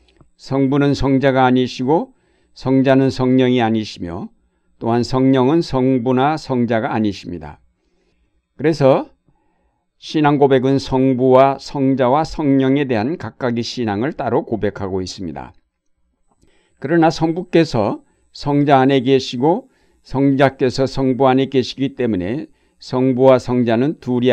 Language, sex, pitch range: Korean, male, 115-145 Hz